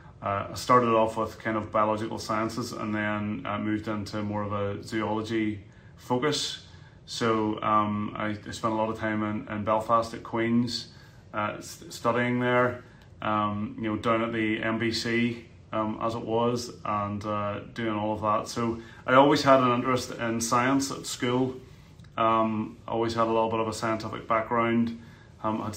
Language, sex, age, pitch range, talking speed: English, male, 30-49, 110-125 Hz, 175 wpm